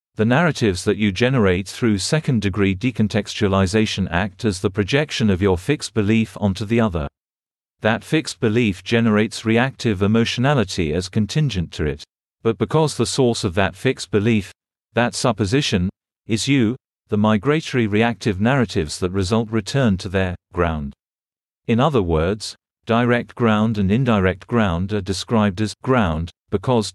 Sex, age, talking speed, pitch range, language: male, 40-59, 140 wpm, 95-120 Hz, English